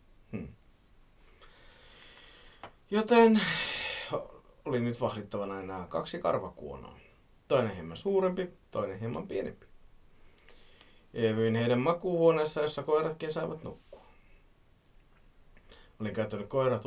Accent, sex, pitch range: native, male, 110-160 Hz